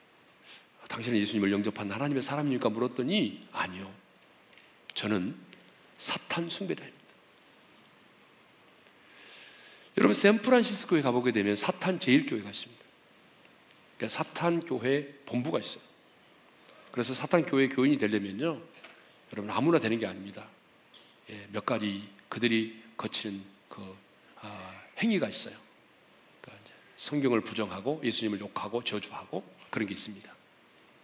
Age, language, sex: 40-59, Korean, male